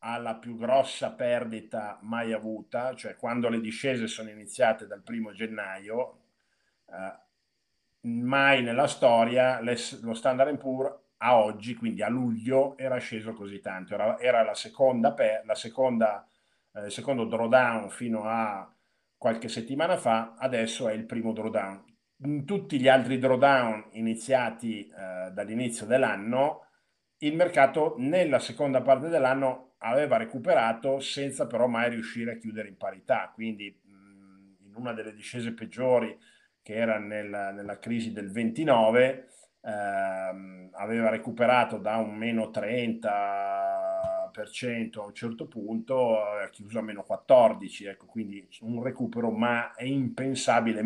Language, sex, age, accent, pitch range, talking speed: Italian, male, 50-69, native, 110-130 Hz, 130 wpm